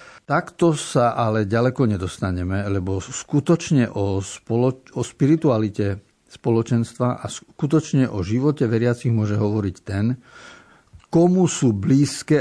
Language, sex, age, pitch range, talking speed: Slovak, male, 50-69, 105-130 Hz, 110 wpm